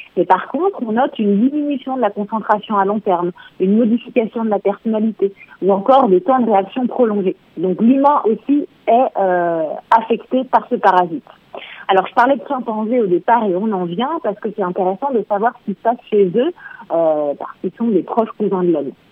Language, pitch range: French, 195-250 Hz